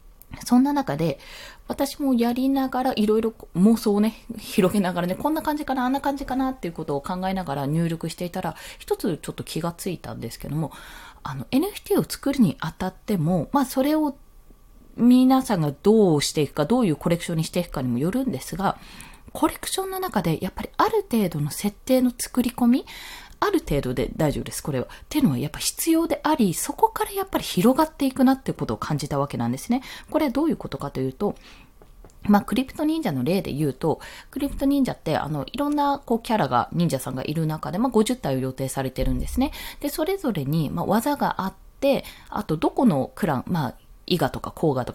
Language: Japanese